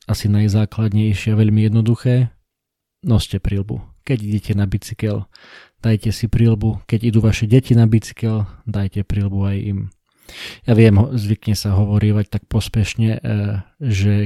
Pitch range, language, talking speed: 100-115 Hz, Slovak, 135 wpm